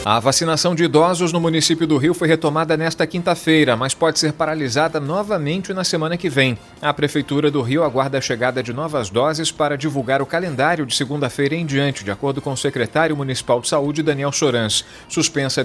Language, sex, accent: Portuguese, male, Brazilian